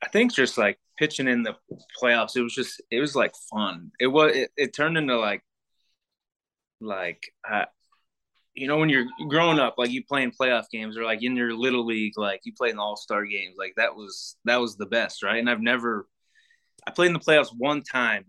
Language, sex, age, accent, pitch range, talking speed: English, male, 20-39, American, 110-155 Hz, 230 wpm